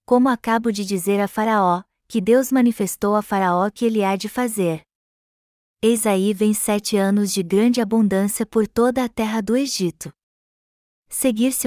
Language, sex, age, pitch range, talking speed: Portuguese, female, 20-39, 190-225 Hz, 160 wpm